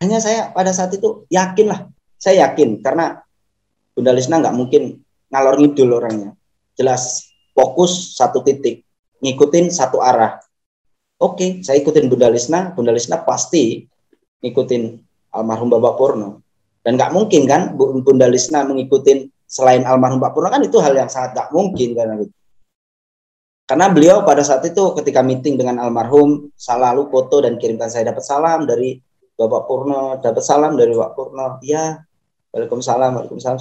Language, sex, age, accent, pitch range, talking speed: Indonesian, male, 20-39, native, 125-180 Hz, 145 wpm